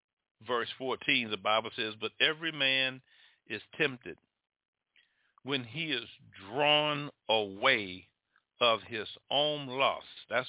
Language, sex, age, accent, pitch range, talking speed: English, male, 50-69, American, 130-170 Hz, 115 wpm